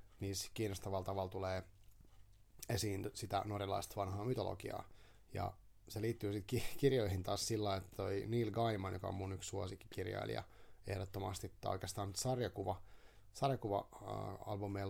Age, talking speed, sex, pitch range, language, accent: 30-49, 120 wpm, male, 95-110 Hz, Finnish, native